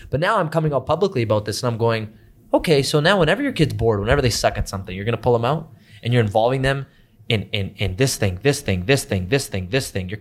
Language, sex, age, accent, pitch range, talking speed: English, male, 20-39, American, 110-150 Hz, 275 wpm